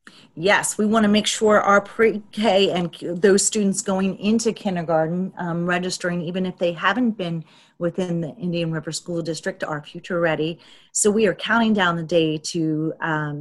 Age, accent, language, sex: 40-59, American, English, female